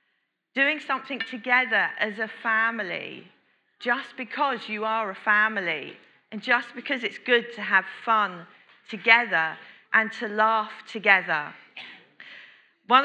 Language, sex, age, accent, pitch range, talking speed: English, female, 40-59, British, 210-265 Hz, 120 wpm